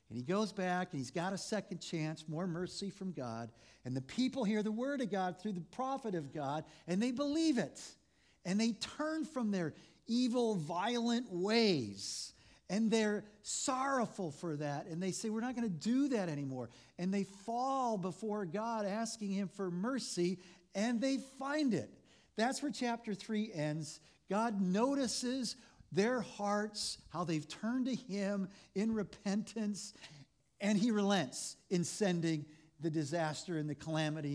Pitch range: 155-220 Hz